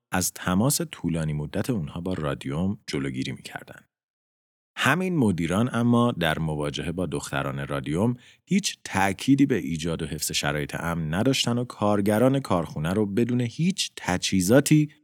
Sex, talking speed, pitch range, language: male, 130 wpm, 75-120 Hz, Persian